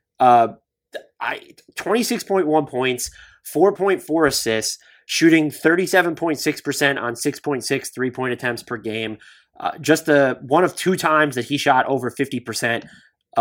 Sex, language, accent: male, English, American